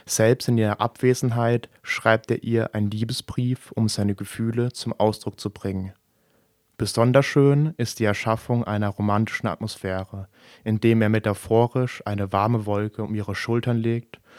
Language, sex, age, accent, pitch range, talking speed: English, male, 20-39, German, 105-120 Hz, 140 wpm